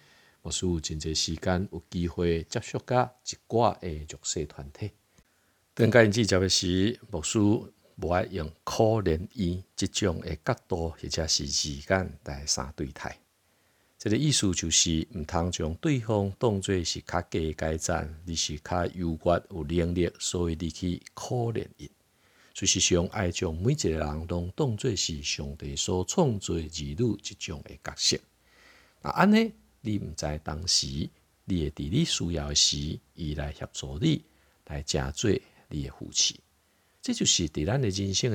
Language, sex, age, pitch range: Chinese, male, 50-69, 80-105 Hz